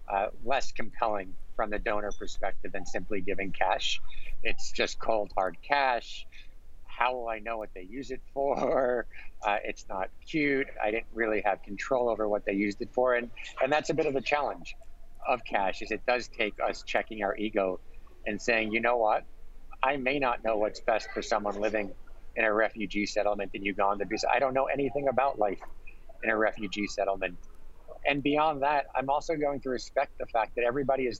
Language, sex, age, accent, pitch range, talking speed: English, male, 50-69, American, 100-125 Hz, 195 wpm